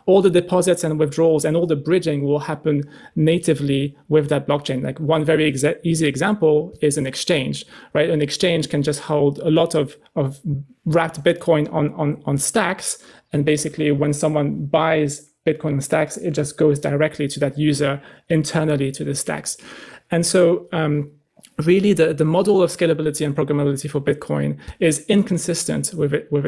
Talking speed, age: 170 wpm, 30-49